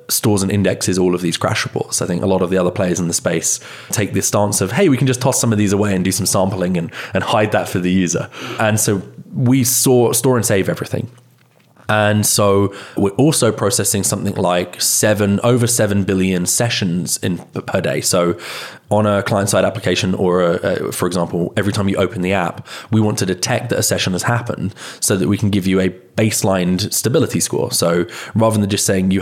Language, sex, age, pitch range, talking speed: English, male, 20-39, 95-115 Hz, 215 wpm